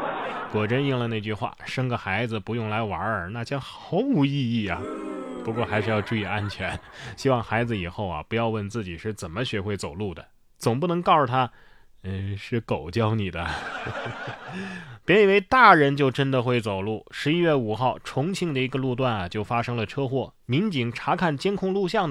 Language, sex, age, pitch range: Chinese, male, 20-39, 105-140 Hz